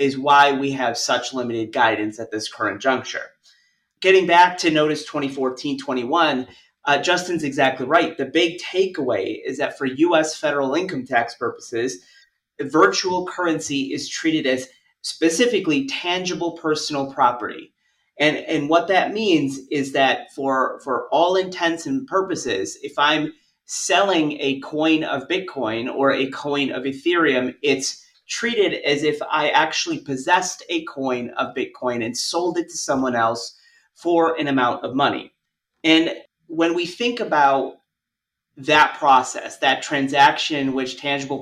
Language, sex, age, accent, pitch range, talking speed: English, male, 30-49, American, 135-175 Hz, 140 wpm